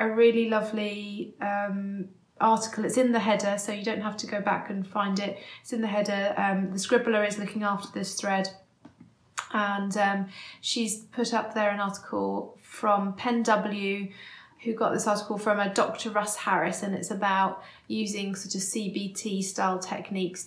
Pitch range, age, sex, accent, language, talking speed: 190-215 Hz, 30-49, female, British, English, 175 wpm